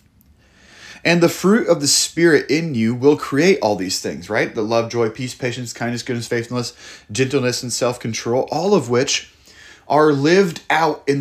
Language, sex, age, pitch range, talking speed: English, male, 30-49, 115-150 Hz, 170 wpm